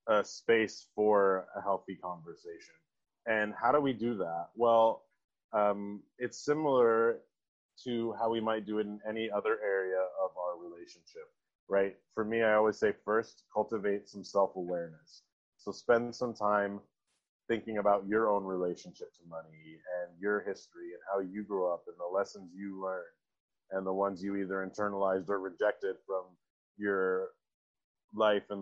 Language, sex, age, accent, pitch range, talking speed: English, male, 30-49, American, 95-115 Hz, 160 wpm